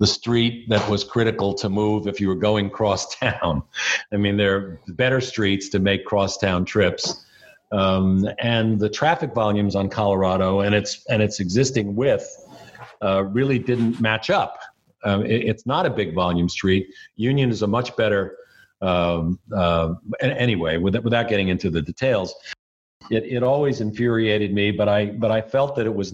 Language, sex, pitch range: English, male, 95-115 Hz